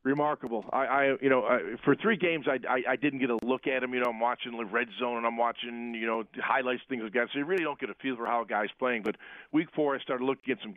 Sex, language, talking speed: male, English, 300 wpm